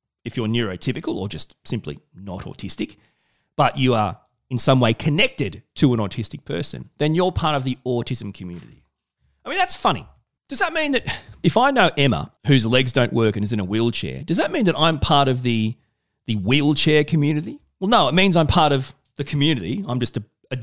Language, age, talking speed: English, 30-49, 205 wpm